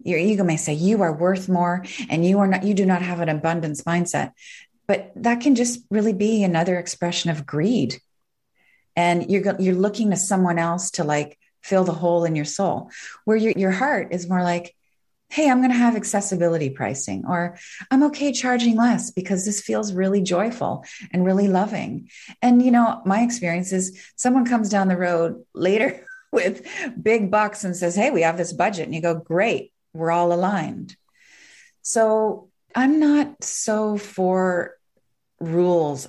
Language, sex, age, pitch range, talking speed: English, female, 30-49, 170-220 Hz, 175 wpm